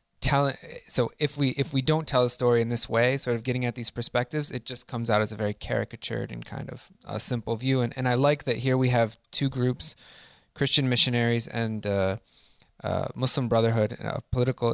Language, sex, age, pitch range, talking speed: English, male, 20-39, 115-130 Hz, 210 wpm